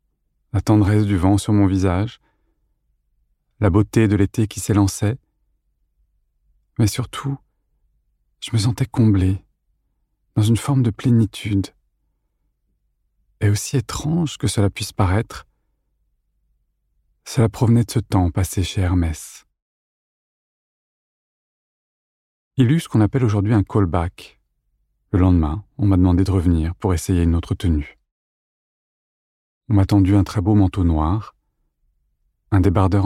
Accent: French